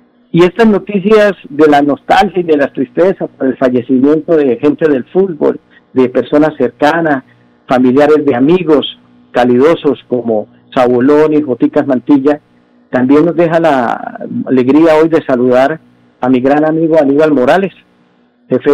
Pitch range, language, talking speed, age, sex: 120-150 Hz, Spanish, 140 wpm, 50-69, male